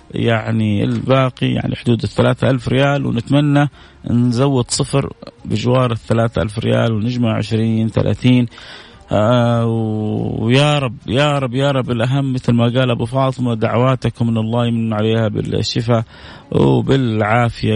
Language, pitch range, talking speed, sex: Arabic, 110-130 Hz, 125 wpm, male